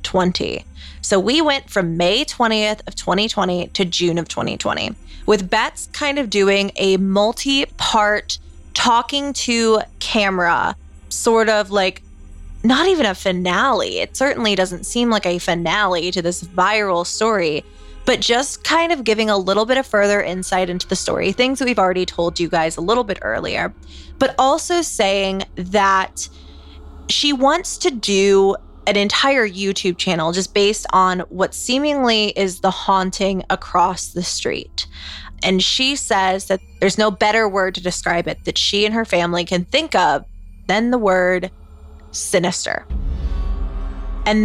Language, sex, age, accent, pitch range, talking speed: English, female, 20-39, American, 175-225 Hz, 155 wpm